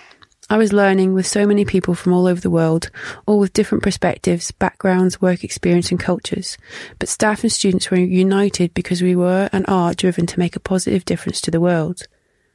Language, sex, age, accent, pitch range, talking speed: English, female, 30-49, British, 175-205 Hz, 195 wpm